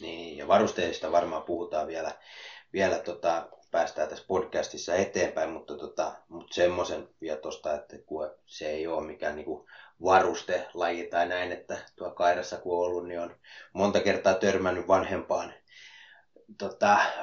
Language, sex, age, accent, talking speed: Finnish, male, 30-49, native, 140 wpm